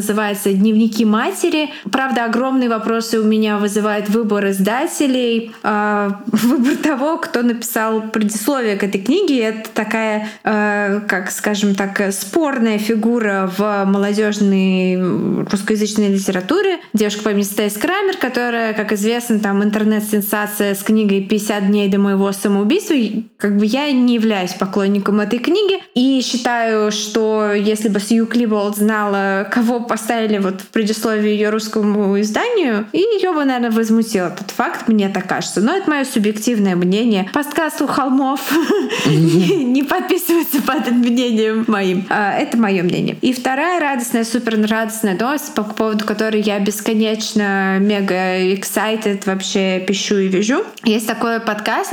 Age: 20-39